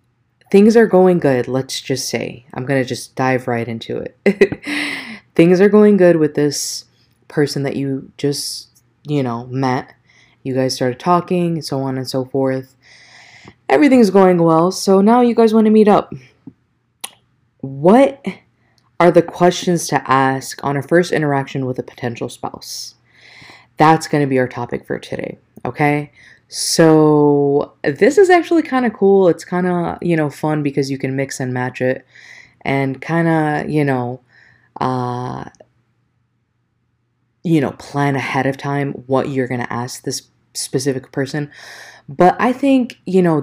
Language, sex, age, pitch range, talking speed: English, female, 20-39, 130-170 Hz, 160 wpm